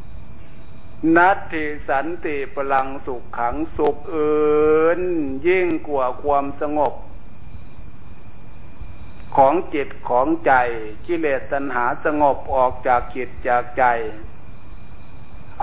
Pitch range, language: 120-160 Hz, Thai